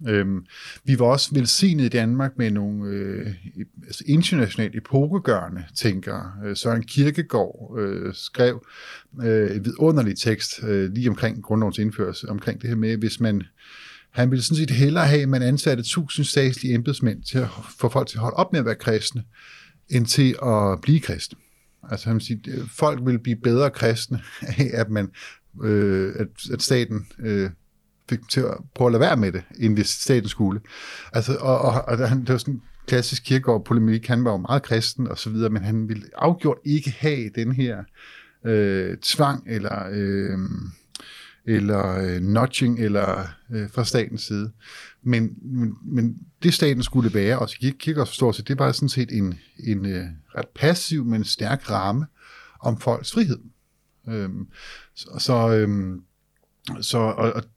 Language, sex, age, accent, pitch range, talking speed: Danish, male, 50-69, native, 105-130 Hz, 165 wpm